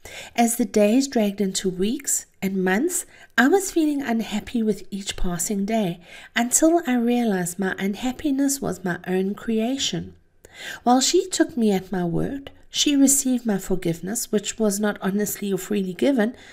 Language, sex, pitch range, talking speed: English, female, 190-250 Hz, 155 wpm